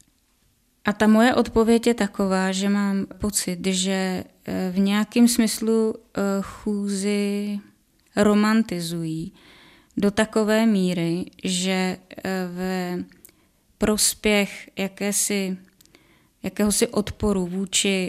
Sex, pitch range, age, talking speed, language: female, 185-210 Hz, 20-39, 85 wpm, Czech